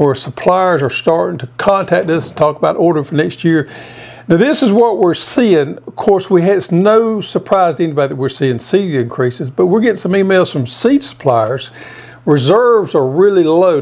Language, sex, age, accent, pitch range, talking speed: English, male, 60-79, American, 130-180 Hz, 200 wpm